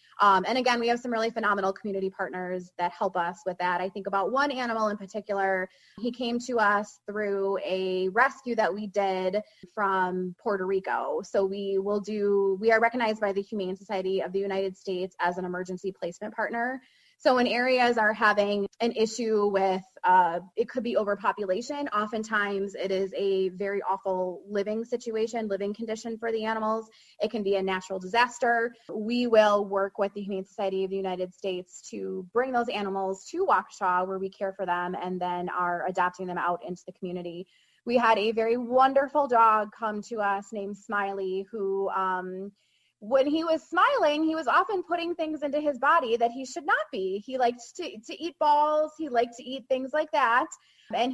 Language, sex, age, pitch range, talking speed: English, female, 20-39, 195-235 Hz, 190 wpm